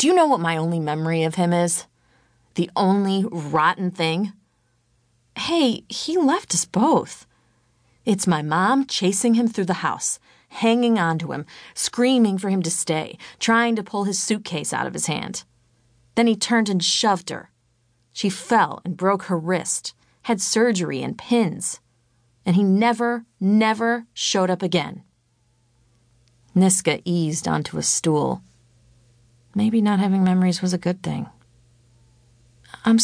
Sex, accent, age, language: female, American, 30-49, English